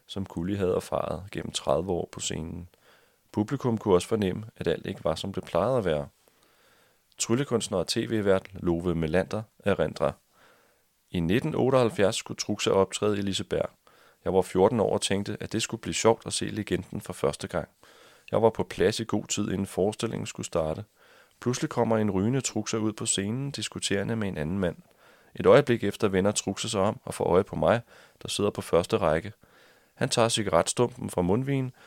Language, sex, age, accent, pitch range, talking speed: Danish, male, 30-49, native, 95-115 Hz, 185 wpm